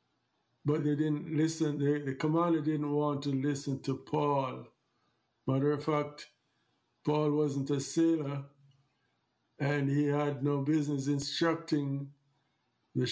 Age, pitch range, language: 50-69, 135-155 Hz, English